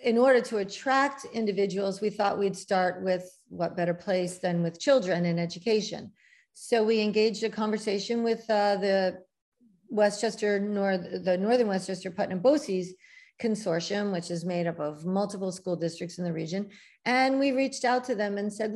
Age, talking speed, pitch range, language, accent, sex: 50-69, 170 wpm, 190-230 Hz, English, American, female